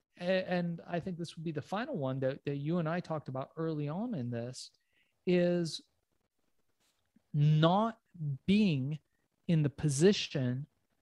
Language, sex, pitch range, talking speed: English, male, 155-190 Hz, 140 wpm